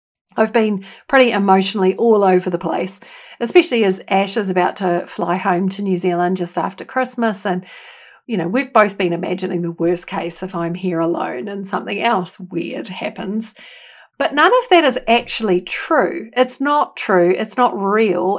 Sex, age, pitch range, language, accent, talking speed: female, 50-69, 185-235 Hz, English, Australian, 175 wpm